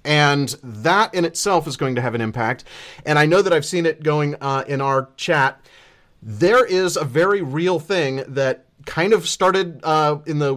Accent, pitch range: American, 130-165 Hz